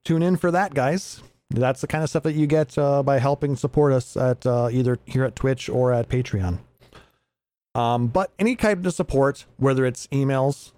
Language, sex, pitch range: English, male, 115-150 Hz